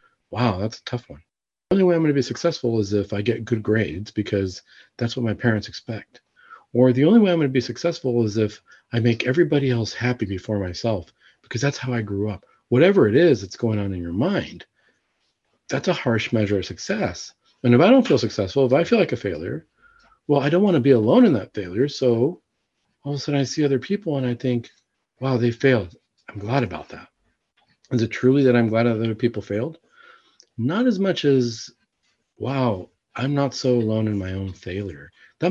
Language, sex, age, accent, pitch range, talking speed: English, male, 40-59, American, 110-140 Hz, 215 wpm